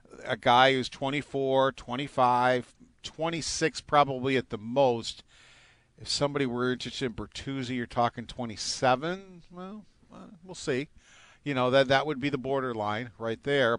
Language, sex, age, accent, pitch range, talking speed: English, male, 50-69, American, 110-135 Hz, 140 wpm